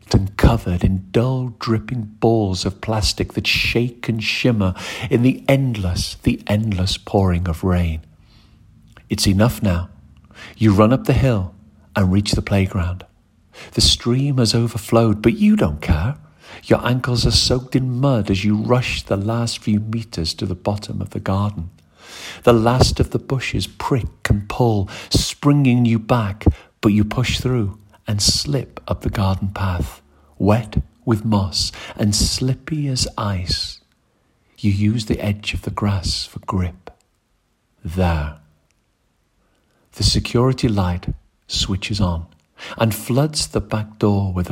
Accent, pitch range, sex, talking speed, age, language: British, 90-115 Hz, male, 145 wpm, 50-69, English